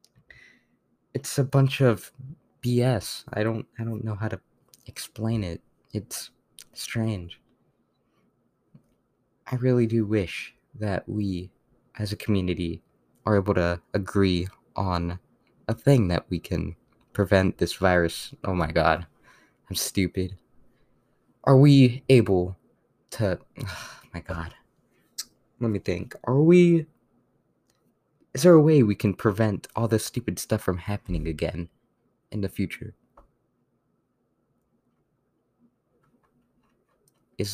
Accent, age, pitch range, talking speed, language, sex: American, 20-39, 90-115 Hz, 115 wpm, English, male